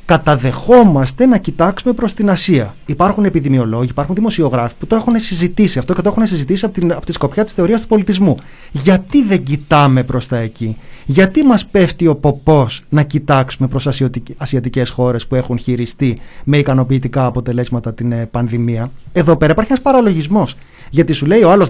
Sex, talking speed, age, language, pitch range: male, 175 wpm, 30-49, Greek, 135-205 Hz